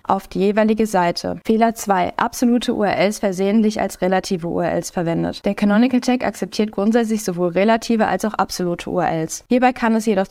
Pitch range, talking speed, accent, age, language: 180-210 Hz, 165 wpm, German, 20-39, German